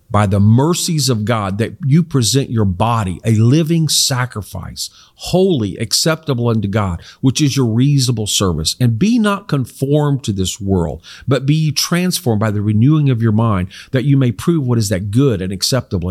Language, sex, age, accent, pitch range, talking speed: English, male, 50-69, American, 105-155 Hz, 180 wpm